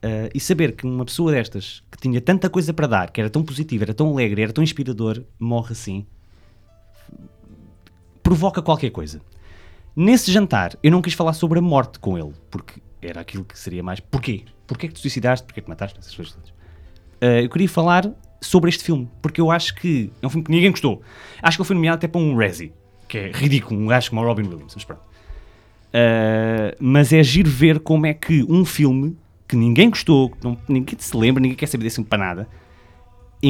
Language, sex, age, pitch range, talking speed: English, male, 20-39, 100-155 Hz, 210 wpm